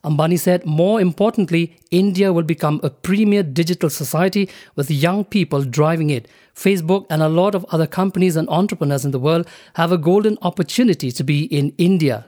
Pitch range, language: 155-190 Hz, English